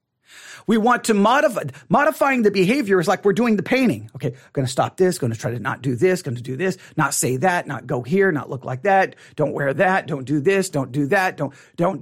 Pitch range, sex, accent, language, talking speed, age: 145-215 Hz, male, American, English, 255 wpm, 40-59